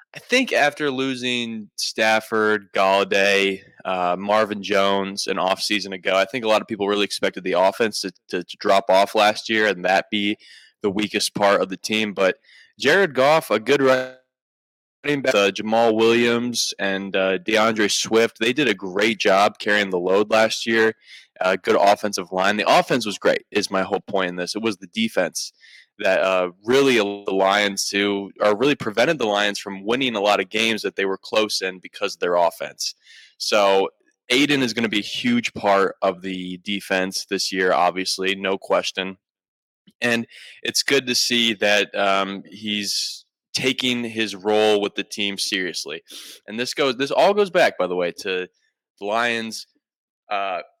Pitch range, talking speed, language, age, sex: 95-115 Hz, 180 wpm, English, 20-39, male